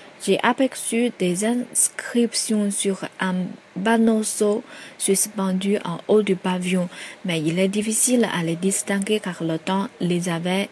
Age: 20-39